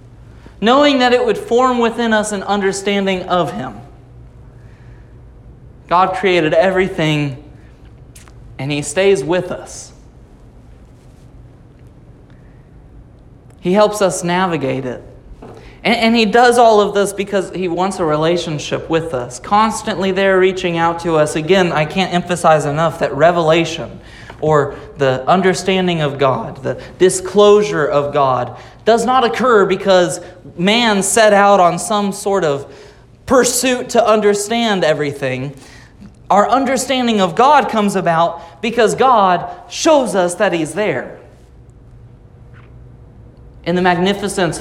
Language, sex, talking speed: English, male, 120 wpm